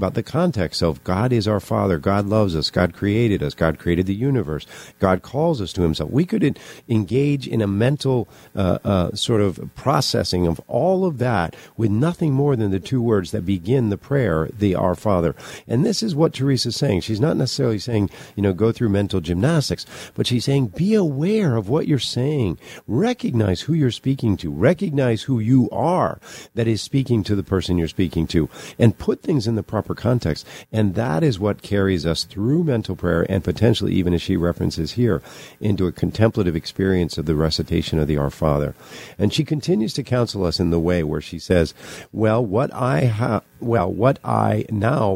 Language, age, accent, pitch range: English, 50-69, American, 90-130 Hz